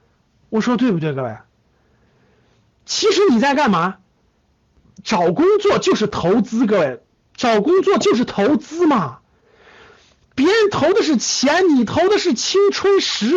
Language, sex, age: Chinese, male, 50-69